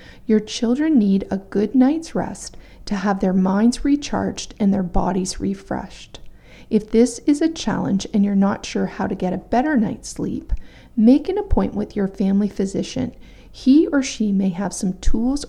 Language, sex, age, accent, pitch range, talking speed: English, female, 40-59, American, 195-235 Hz, 180 wpm